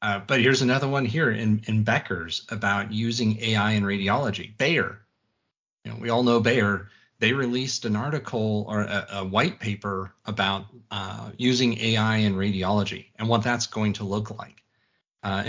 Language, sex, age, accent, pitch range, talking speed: English, male, 30-49, American, 100-120 Hz, 170 wpm